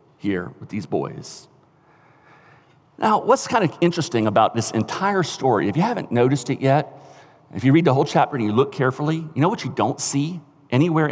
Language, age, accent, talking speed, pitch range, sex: English, 50-69, American, 195 wpm, 130-165 Hz, male